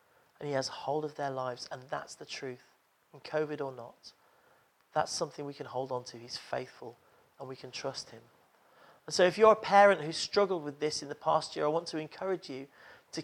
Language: English